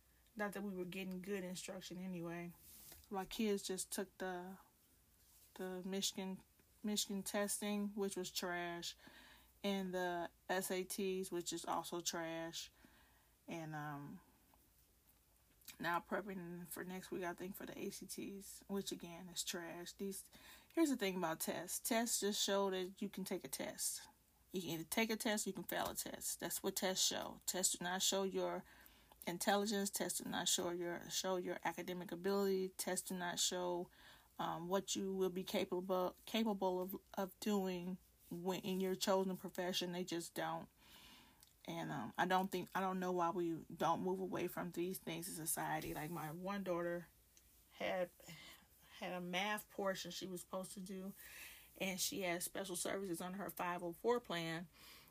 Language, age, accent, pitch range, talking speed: English, 20-39, American, 175-195 Hz, 170 wpm